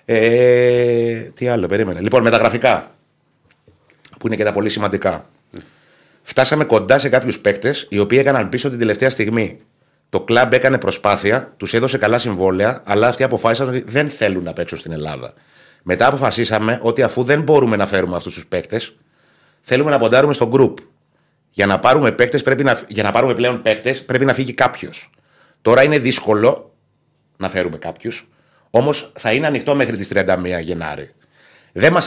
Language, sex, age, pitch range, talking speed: Greek, male, 30-49, 100-130 Hz, 155 wpm